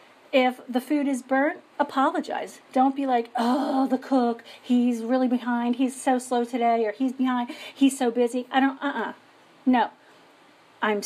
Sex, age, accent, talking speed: female, 40-59, American, 170 wpm